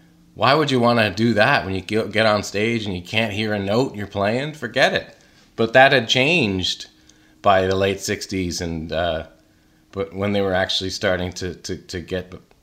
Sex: male